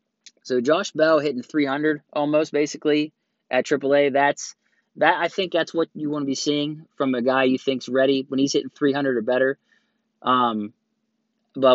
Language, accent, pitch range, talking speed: English, American, 125-150 Hz, 175 wpm